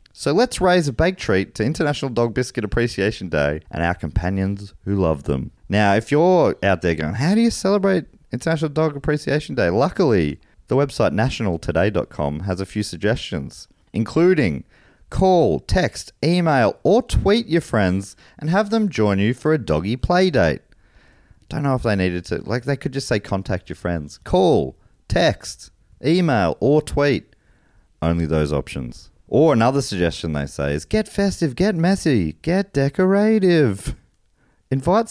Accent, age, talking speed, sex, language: Australian, 30-49, 160 wpm, male, English